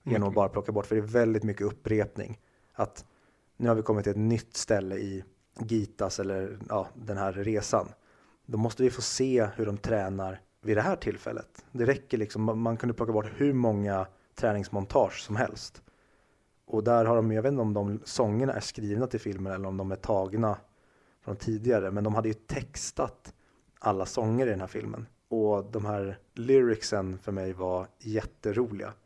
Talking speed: 190 wpm